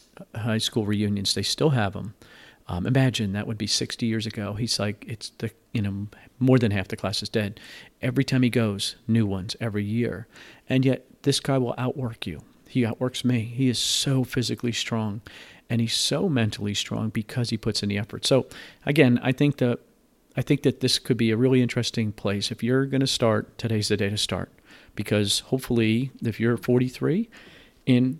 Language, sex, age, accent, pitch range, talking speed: English, male, 40-59, American, 105-130 Hz, 200 wpm